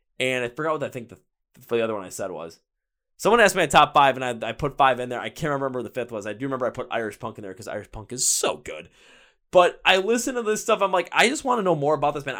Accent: American